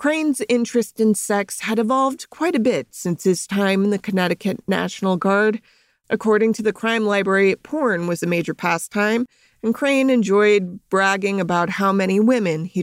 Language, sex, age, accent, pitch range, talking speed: English, female, 30-49, American, 175-225 Hz, 170 wpm